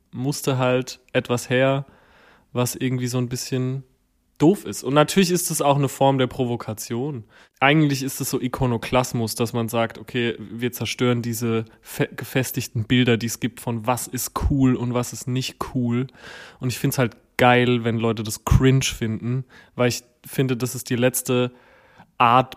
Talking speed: 175 wpm